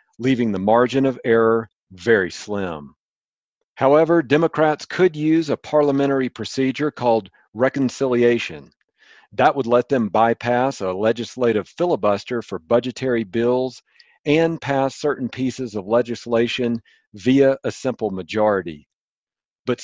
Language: English